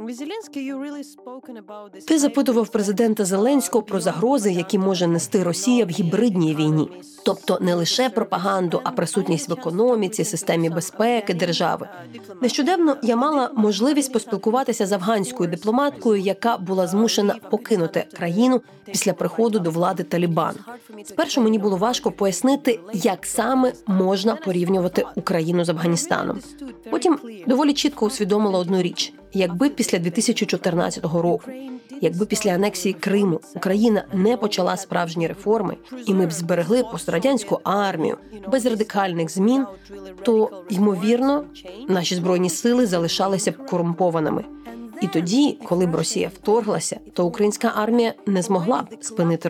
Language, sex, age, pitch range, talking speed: Ukrainian, female, 30-49, 180-235 Hz, 125 wpm